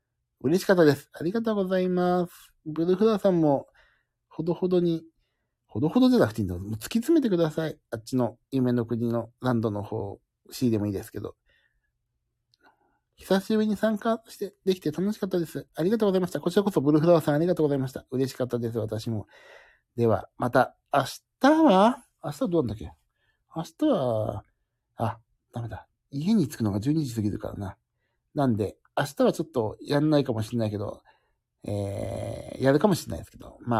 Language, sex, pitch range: Japanese, male, 115-180 Hz